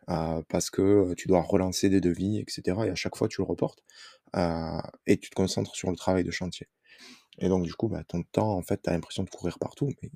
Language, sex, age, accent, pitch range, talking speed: French, male, 20-39, French, 90-115 Hz, 255 wpm